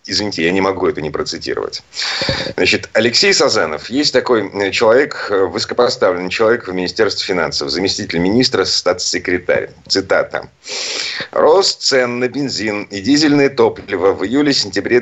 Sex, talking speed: male, 130 wpm